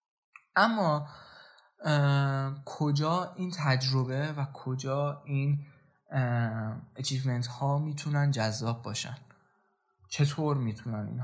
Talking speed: 80 wpm